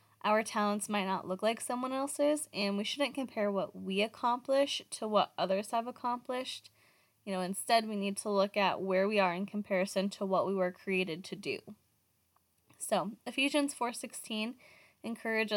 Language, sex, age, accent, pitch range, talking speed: English, female, 10-29, American, 195-225 Hz, 170 wpm